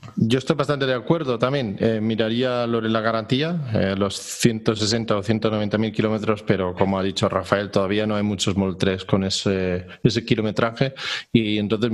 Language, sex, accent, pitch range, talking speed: Spanish, male, Spanish, 105-120 Hz, 170 wpm